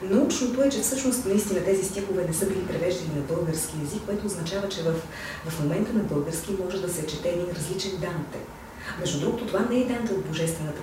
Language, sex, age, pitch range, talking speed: Bulgarian, female, 40-59, 155-200 Hz, 205 wpm